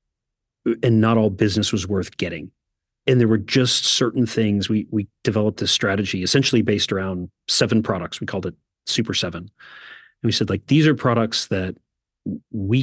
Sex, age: male, 40-59